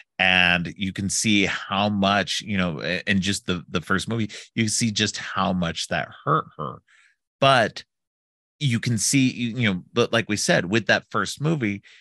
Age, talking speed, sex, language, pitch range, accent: 30-49, 180 wpm, male, English, 90-105 Hz, American